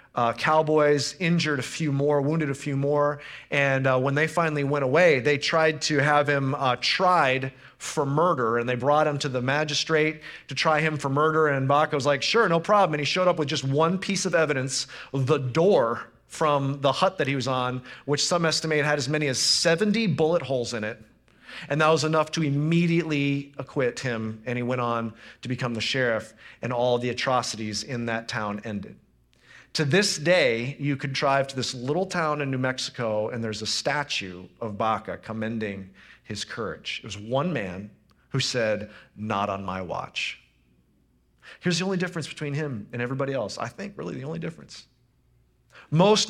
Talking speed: 190 wpm